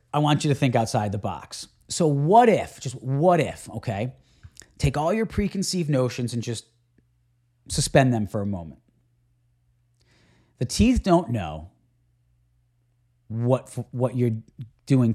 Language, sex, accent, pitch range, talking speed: English, male, American, 110-135 Hz, 140 wpm